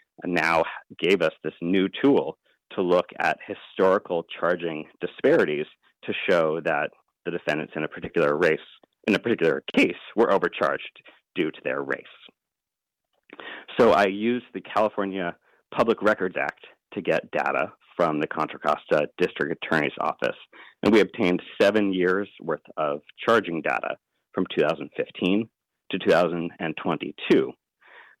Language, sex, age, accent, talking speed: English, male, 40-59, American, 130 wpm